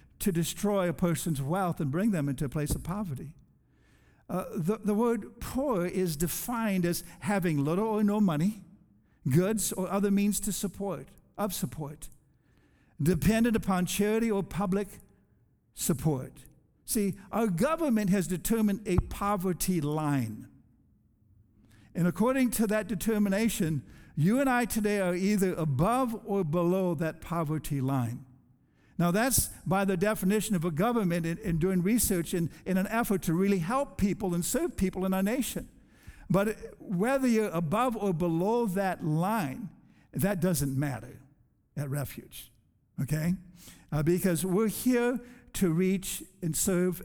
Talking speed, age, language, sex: 145 wpm, 60-79, English, male